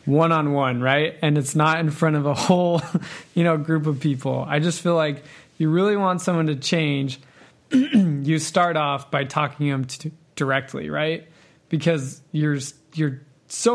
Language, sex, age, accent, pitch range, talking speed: English, male, 20-39, American, 140-170 Hz, 175 wpm